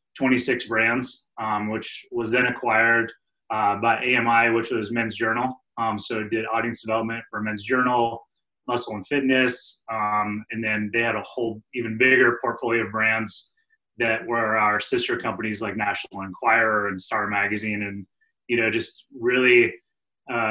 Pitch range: 110-130 Hz